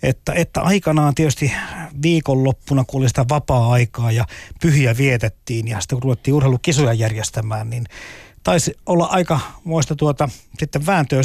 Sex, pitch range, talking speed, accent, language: male, 120-155 Hz, 135 wpm, native, Finnish